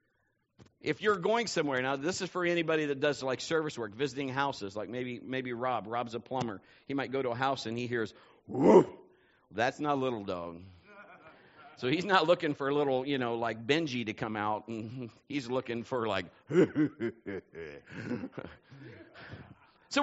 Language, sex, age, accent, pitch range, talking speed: English, male, 50-69, American, 140-180 Hz, 170 wpm